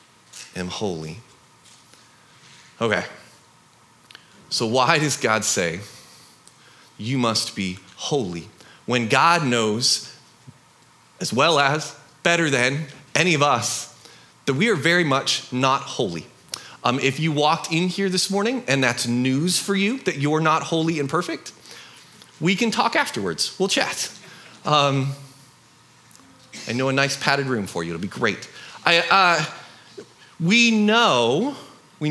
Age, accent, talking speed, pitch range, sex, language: 30-49, American, 135 wpm, 115-160 Hz, male, English